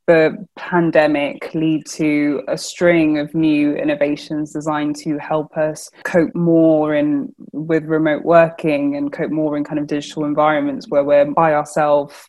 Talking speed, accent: 150 wpm, British